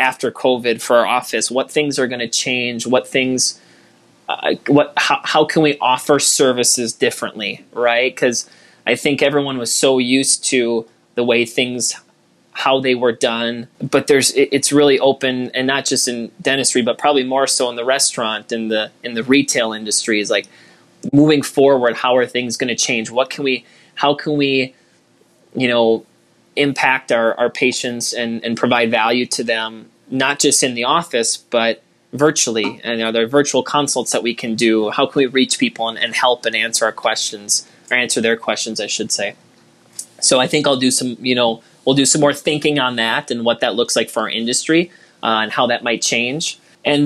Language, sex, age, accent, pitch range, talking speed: English, male, 20-39, American, 120-140 Hz, 195 wpm